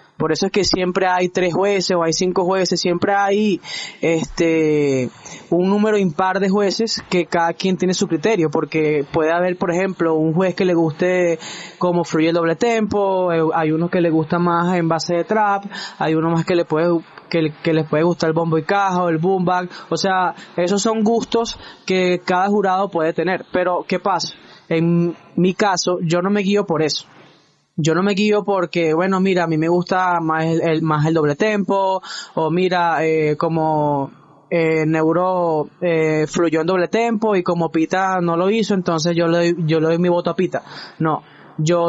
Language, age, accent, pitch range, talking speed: Spanish, 10-29, Colombian, 165-190 Hz, 200 wpm